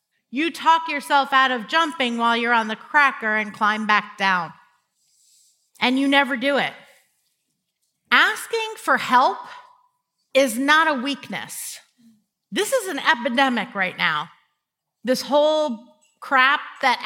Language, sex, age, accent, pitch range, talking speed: English, female, 40-59, American, 255-320 Hz, 130 wpm